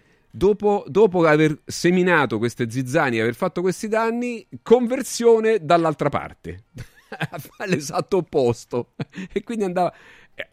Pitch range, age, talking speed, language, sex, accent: 100-150 Hz, 40-59, 110 wpm, Italian, male, native